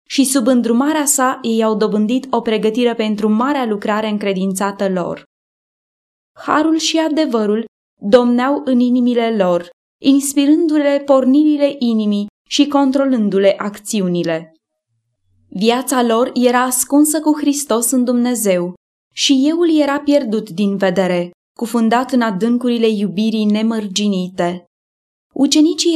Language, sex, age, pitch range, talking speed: English, female, 20-39, 205-265 Hz, 110 wpm